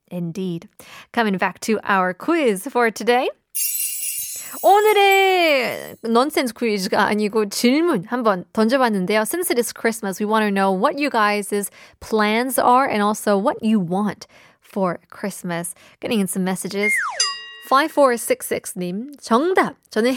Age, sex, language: 20-39, female, Korean